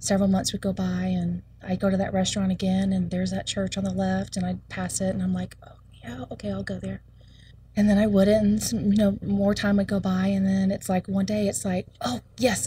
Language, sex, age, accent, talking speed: English, female, 30-49, American, 250 wpm